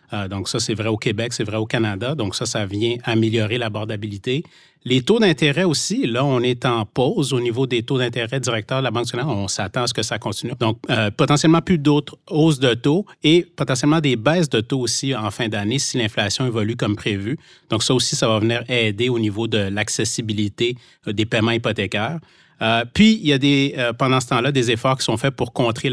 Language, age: French, 30-49